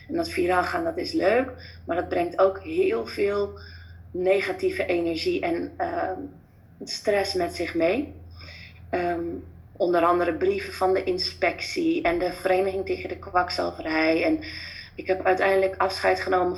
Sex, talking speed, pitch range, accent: female, 145 wpm, 170-245 Hz, Dutch